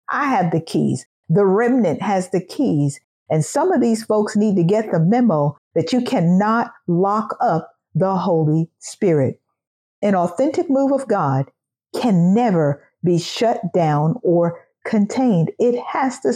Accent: American